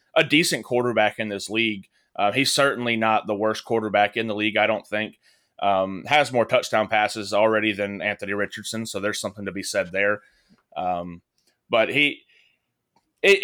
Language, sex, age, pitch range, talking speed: English, male, 30-49, 105-130 Hz, 175 wpm